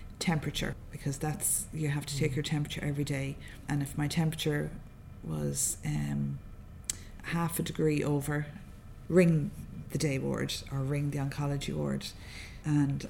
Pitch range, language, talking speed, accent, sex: 135-160 Hz, English, 140 wpm, Irish, female